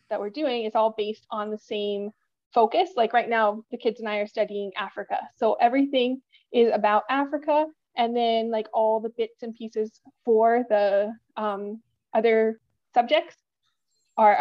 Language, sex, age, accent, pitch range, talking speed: English, female, 20-39, American, 210-230 Hz, 160 wpm